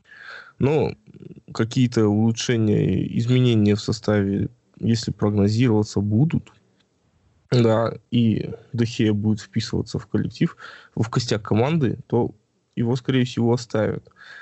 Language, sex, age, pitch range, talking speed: Russian, male, 20-39, 105-125 Hz, 100 wpm